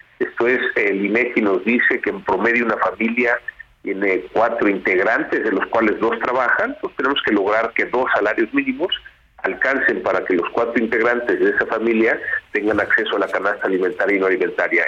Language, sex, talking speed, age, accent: Spanish, male, 180 wpm, 50-69, Mexican